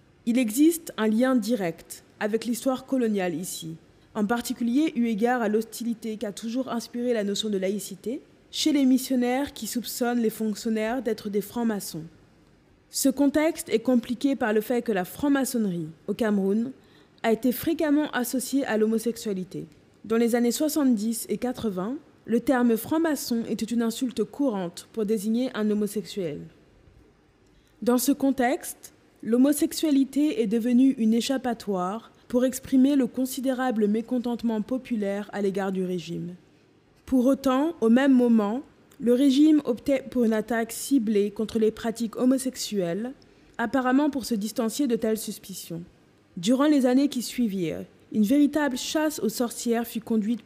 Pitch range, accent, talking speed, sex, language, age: 215-260 Hz, French, 145 wpm, female, French, 20-39